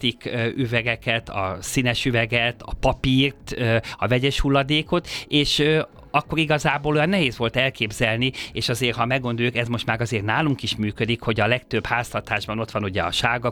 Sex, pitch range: male, 110-140 Hz